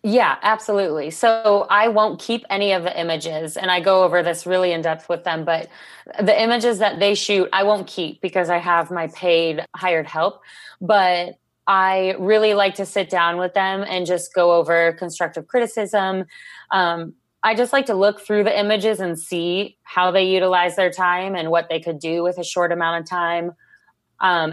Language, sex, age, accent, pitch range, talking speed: English, female, 20-39, American, 170-205 Hz, 195 wpm